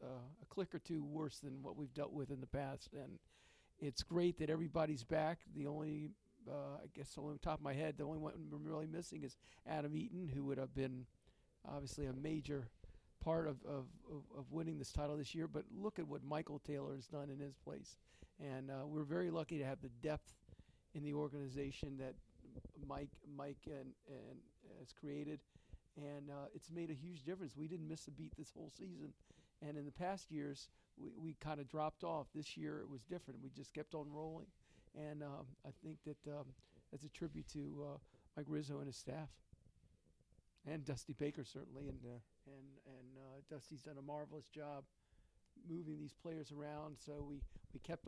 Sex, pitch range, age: male, 140-155 Hz, 50-69